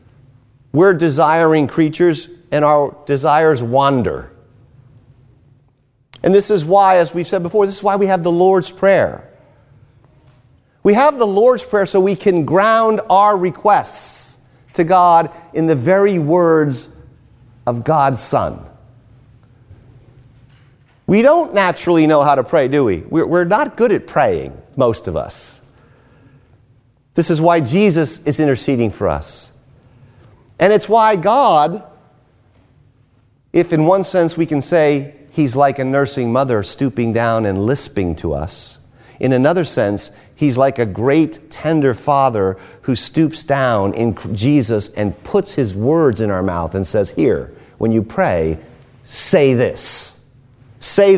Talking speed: 140 wpm